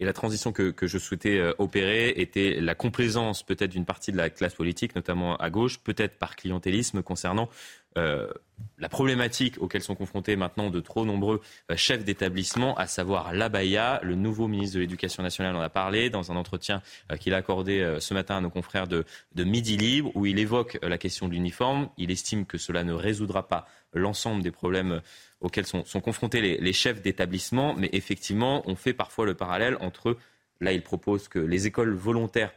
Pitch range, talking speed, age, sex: 95-120 Hz, 195 wpm, 20-39, male